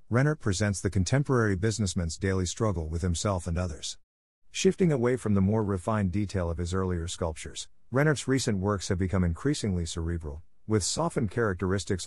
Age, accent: 50-69, American